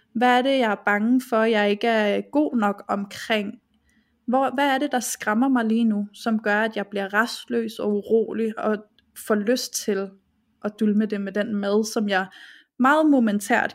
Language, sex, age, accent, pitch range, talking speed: Danish, female, 20-39, native, 210-250 Hz, 190 wpm